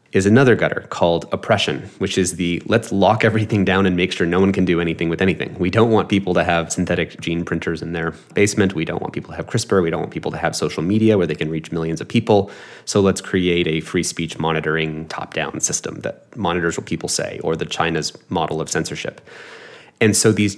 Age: 30-49